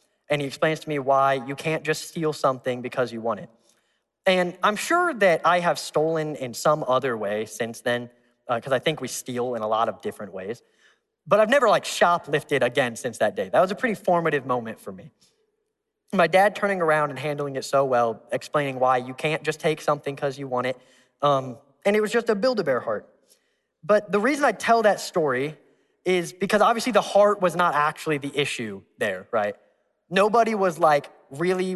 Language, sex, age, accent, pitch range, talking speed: English, male, 10-29, American, 140-195 Hz, 205 wpm